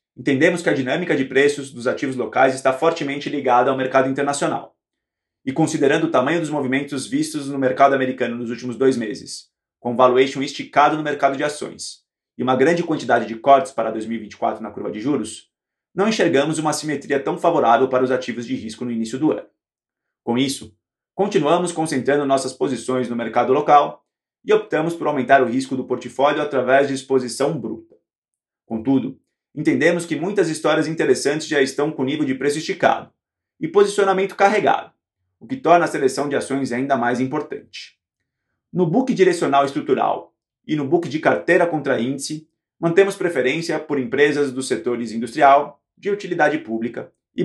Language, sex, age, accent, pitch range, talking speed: Portuguese, male, 20-39, Brazilian, 125-160 Hz, 165 wpm